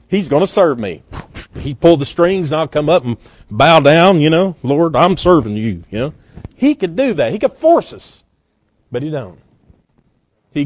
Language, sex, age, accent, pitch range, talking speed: English, male, 40-59, American, 115-170 Hz, 205 wpm